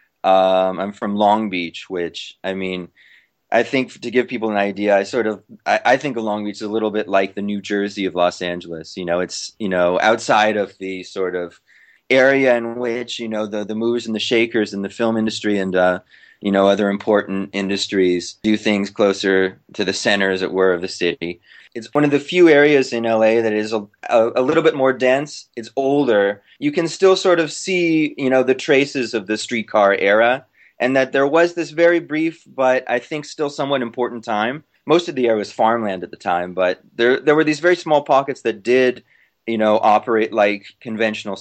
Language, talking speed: English, 215 wpm